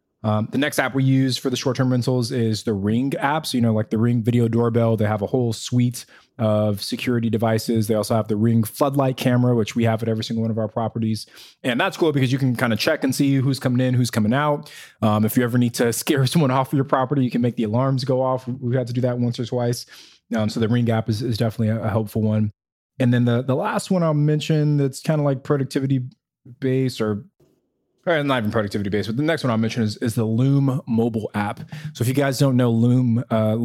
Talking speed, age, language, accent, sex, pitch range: 255 wpm, 20-39, English, American, male, 110-130 Hz